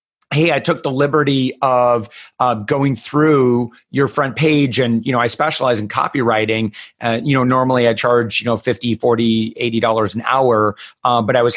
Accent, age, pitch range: American, 30-49, 120-155 Hz